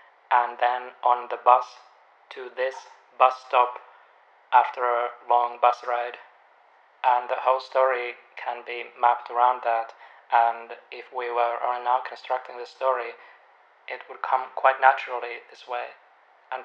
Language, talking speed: English, 145 wpm